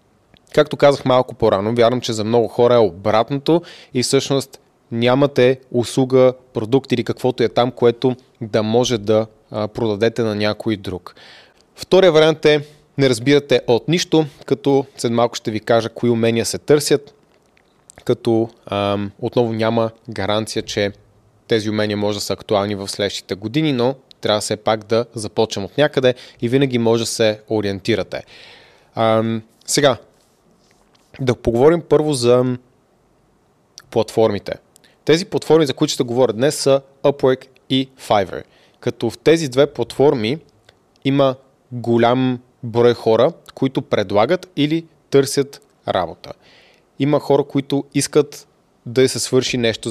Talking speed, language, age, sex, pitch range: 135 wpm, Bulgarian, 20-39, male, 110-140 Hz